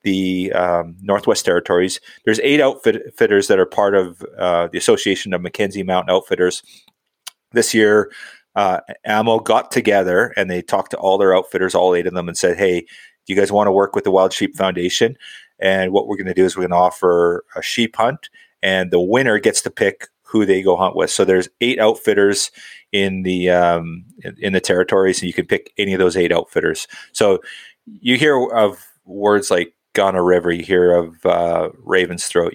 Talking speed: 200 wpm